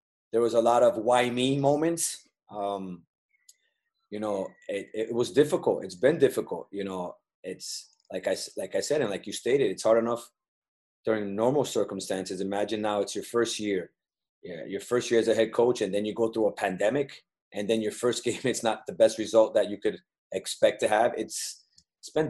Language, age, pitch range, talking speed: English, 30-49, 105-125 Hz, 205 wpm